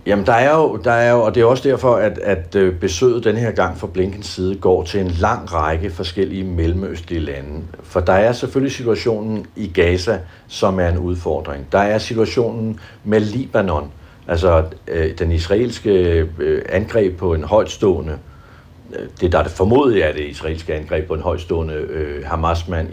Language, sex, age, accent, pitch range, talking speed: Danish, male, 60-79, native, 90-115 Hz, 175 wpm